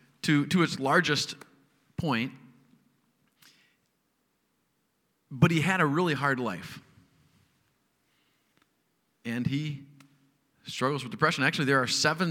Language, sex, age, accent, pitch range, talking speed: English, male, 40-59, American, 135-170 Hz, 100 wpm